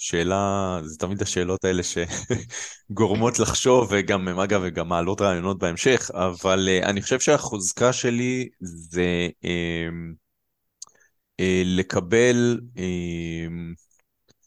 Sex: male